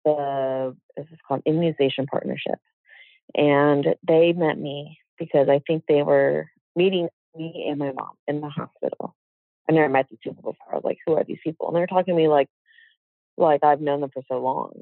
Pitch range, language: 140-170 Hz, English